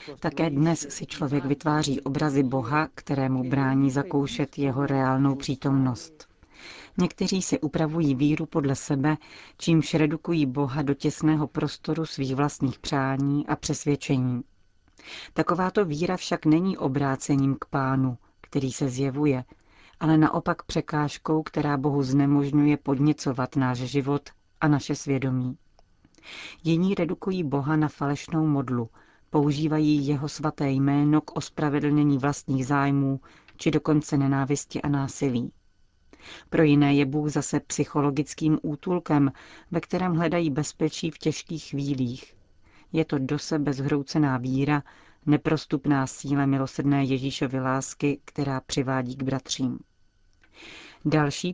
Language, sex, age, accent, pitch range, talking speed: Czech, female, 40-59, native, 135-155 Hz, 115 wpm